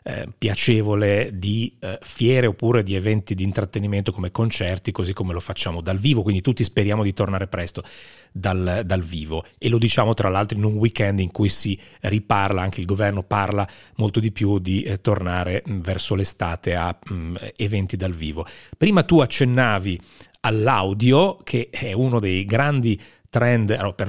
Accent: native